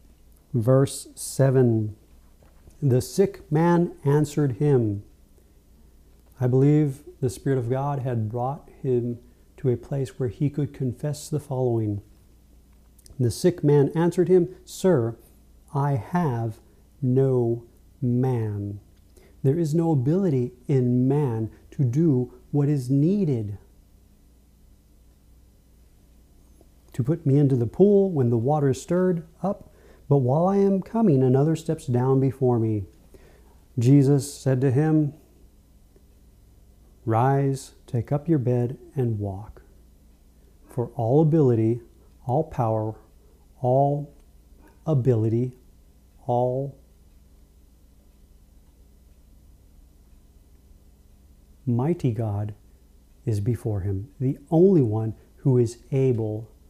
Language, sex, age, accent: English, male, 40-59, American